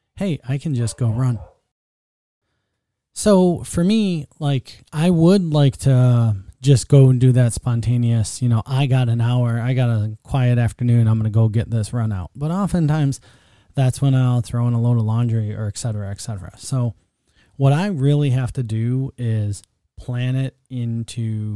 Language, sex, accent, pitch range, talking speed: English, male, American, 110-135 Hz, 185 wpm